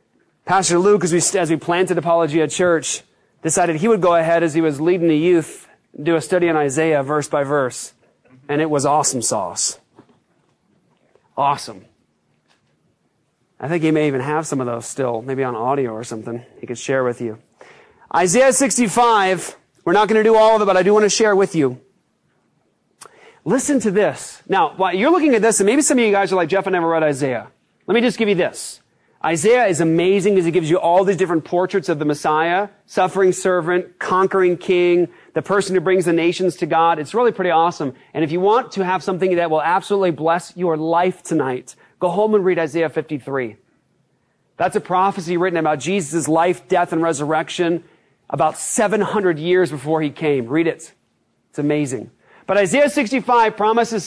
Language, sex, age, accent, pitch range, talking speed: English, male, 30-49, American, 155-195 Hz, 195 wpm